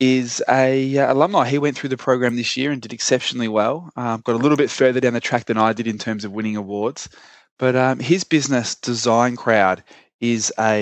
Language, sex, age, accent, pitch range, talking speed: English, male, 20-39, Australian, 105-125 Hz, 220 wpm